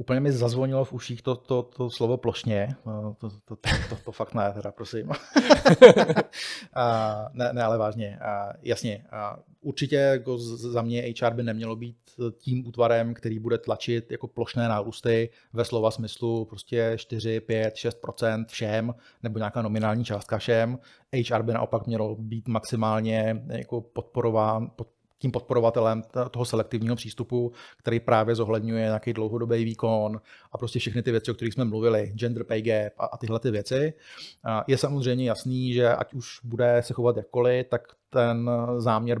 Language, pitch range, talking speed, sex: Czech, 115-120 Hz, 165 wpm, male